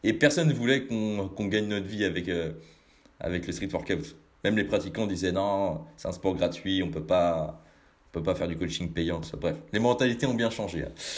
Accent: French